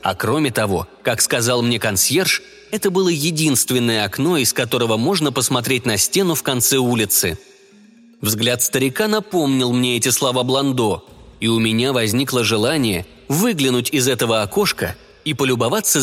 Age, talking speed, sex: 20-39, 140 wpm, male